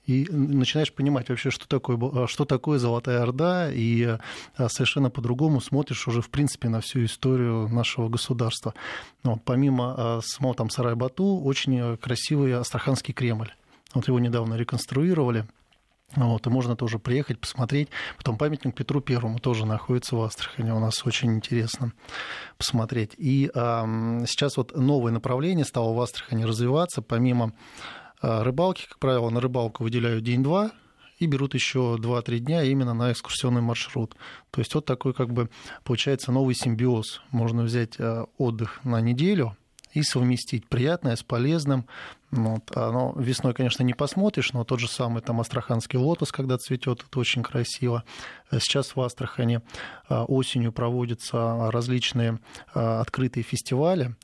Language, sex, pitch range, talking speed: Russian, male, 115-135 Hz, 140 wpm